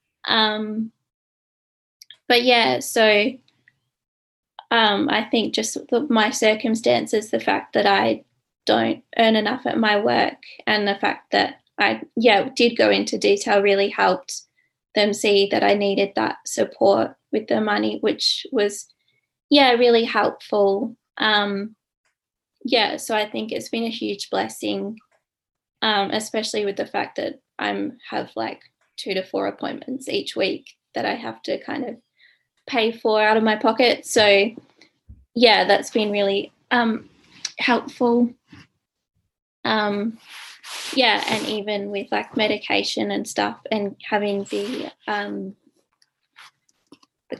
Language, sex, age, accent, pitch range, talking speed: English, female, 20-39, Australian, 205-255 Hz, 135 wpm